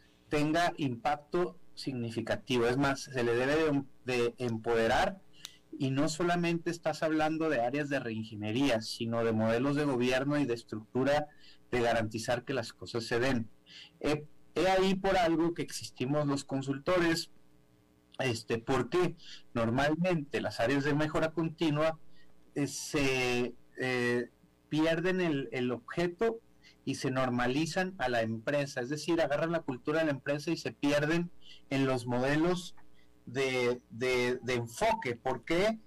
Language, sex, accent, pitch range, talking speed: Spanish, male, Mexican, 120-165 Hz, 140 wpm